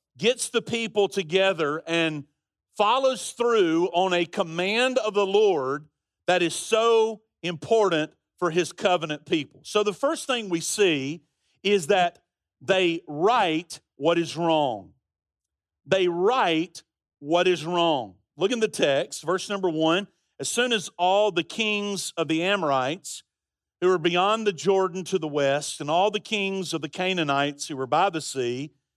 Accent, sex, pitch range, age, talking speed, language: American, male, 155-205 Hz, 50-69, 155 wpm, English